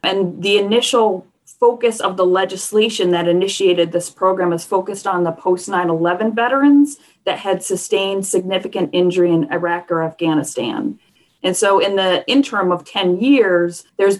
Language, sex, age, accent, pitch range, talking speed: English, female, 40-59, American, 175-205 Hz, 150 wpm